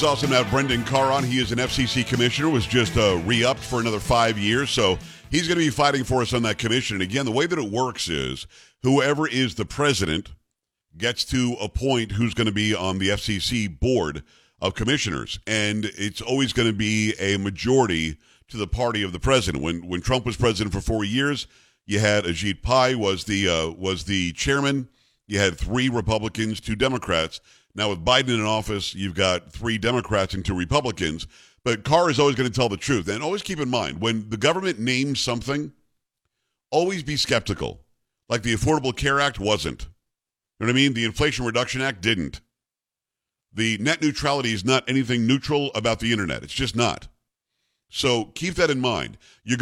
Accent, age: American, 50-69